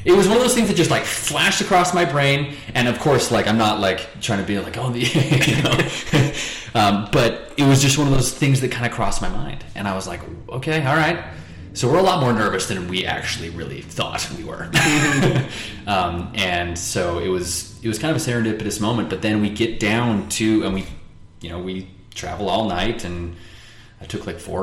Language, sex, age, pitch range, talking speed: English, male, 20-39, 90-115 Hz, 230 wpm